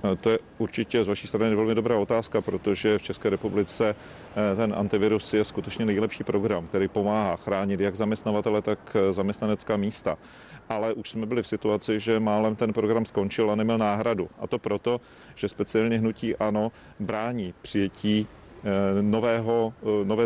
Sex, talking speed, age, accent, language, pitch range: male, 155 wpm, 40-59, native, Czech, 105-115 Hz